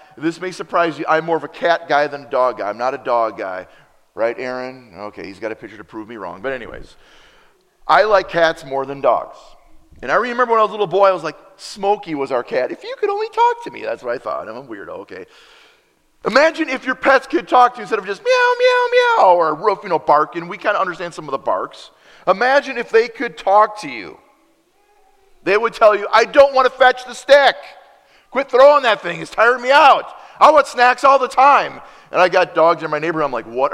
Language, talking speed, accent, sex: English, 245 wpm, American, male